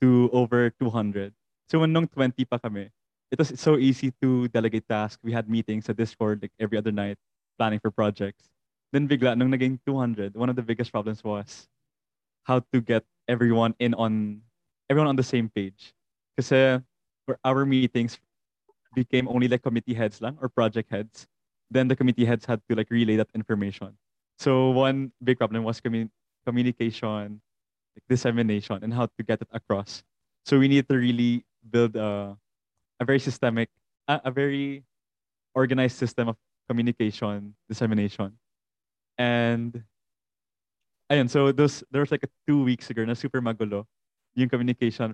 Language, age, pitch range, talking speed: English, 20-39, 110-130 Hz, 160 wpm